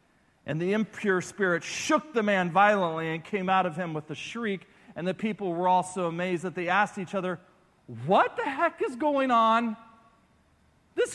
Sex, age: male, 40-59